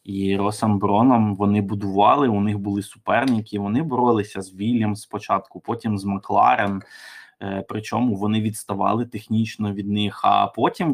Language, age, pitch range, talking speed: Ukrainian, 20-39, 105-130 Hz, 135 wpm